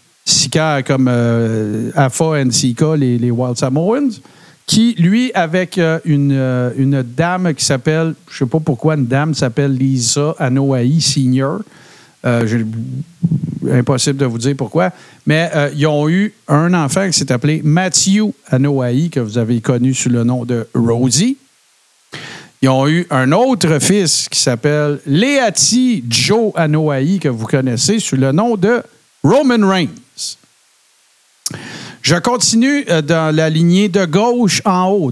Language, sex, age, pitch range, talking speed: French, male, 50-69, 135-185 Hz, 150 wpm